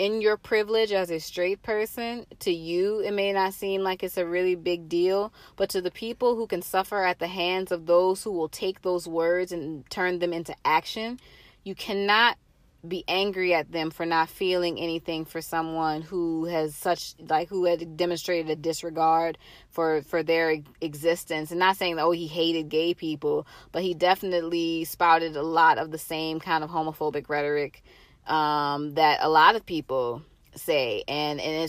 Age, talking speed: 20-39, 185 wpm